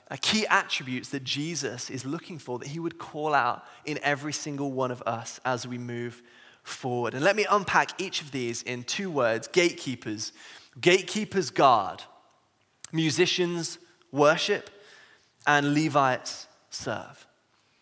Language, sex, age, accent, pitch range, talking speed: English, male, 20-39, British, 130-165 Hz, 140 wpm